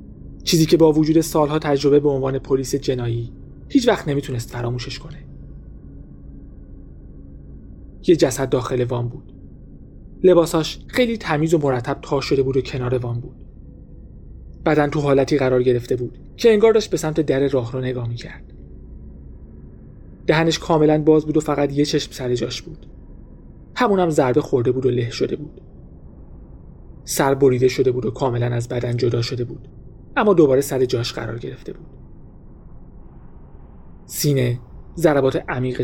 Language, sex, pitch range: Persian, male, 120-155 Hz